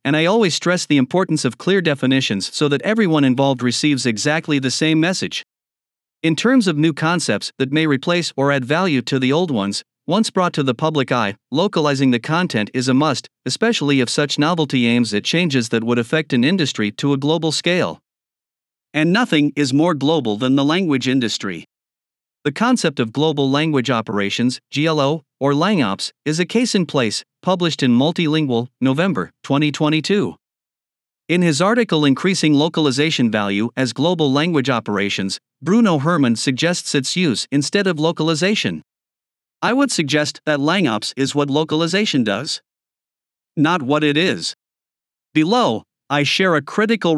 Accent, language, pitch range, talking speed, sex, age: American, English, 130-170 Hz, 160 wpm, male, 50-69